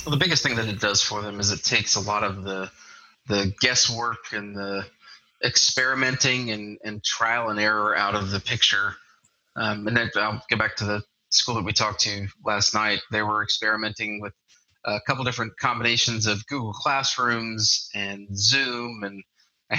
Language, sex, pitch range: English, male, 105-120 Hz